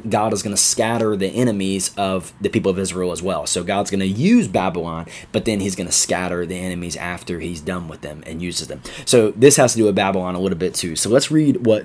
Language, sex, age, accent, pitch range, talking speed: English, male, 20-39, American, 90-115 Hz, 260 wpm